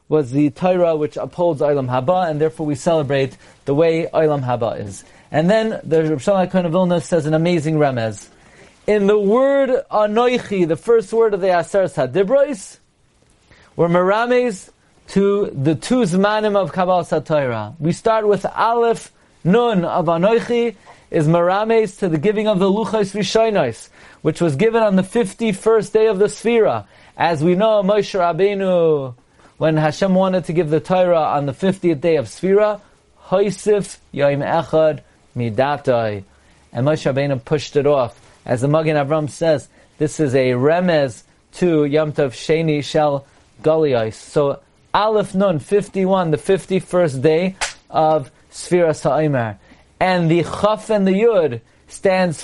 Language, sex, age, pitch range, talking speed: English, male, 30-49, 145-200 Hz, 145 wpm